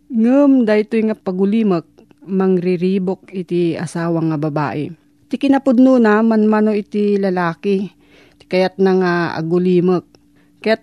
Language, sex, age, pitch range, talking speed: Filipino, female, 40-59, 175-220 Hz, 120 wpm